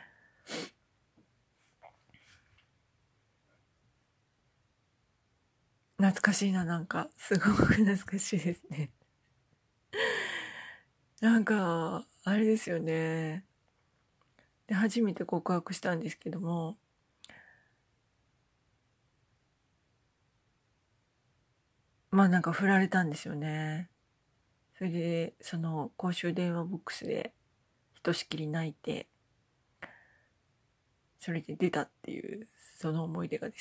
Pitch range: 125-185 Hz